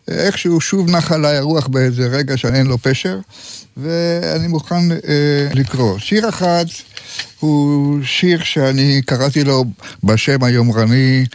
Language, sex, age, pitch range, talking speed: Hebrew, male, 60-79, 125-165 Hz, 120 wpm